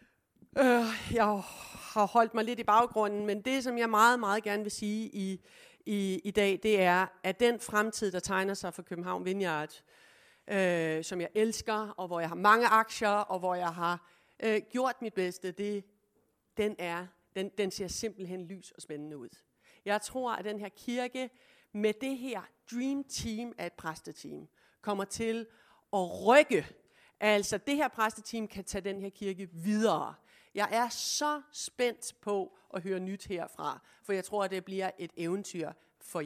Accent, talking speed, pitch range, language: native, 175 wpm, 190-235 Hz, Danish